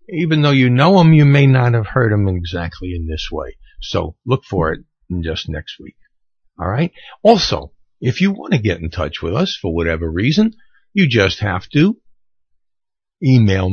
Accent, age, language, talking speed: American, 60-79, English, 185 wpm